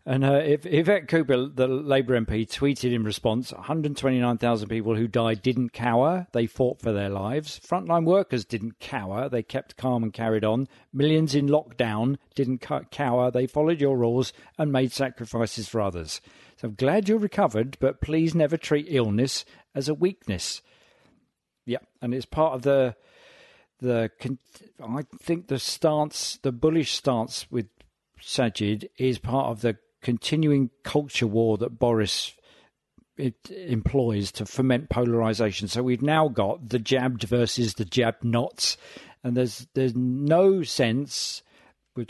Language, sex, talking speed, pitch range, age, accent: English, male, 150 wpm, 115-145 Hz, 50-69, British